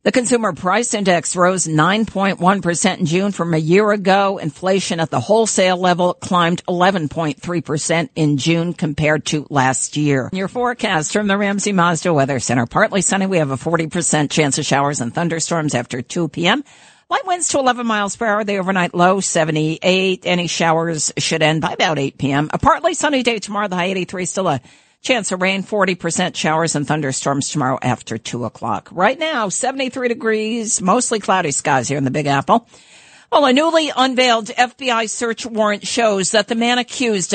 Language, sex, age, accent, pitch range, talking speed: English, female, 50-69, American, 165-220 Hz, 180 wpm